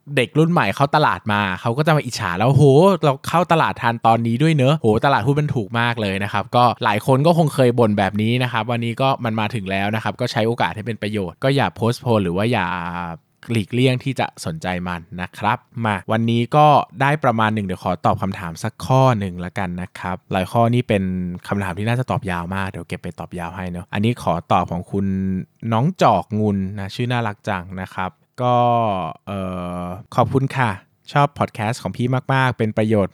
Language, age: Thai, 20-39